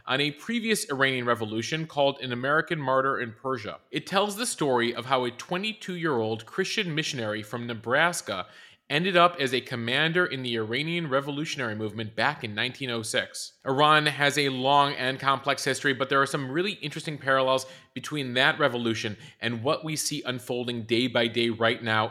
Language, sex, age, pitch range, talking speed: English, male, 30-49, 120-145 Hz, 170 wpm